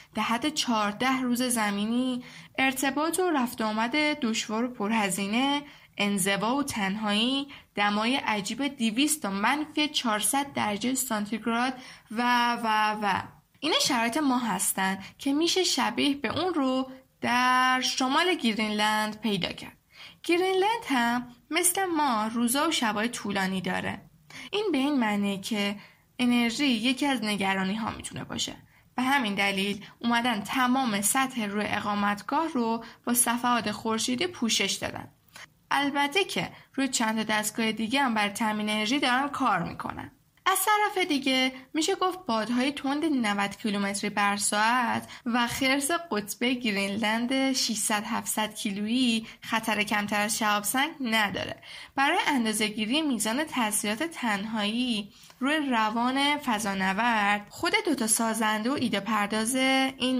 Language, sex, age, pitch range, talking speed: Persian, female, 10-29, 210-275 Hz, 125 wpm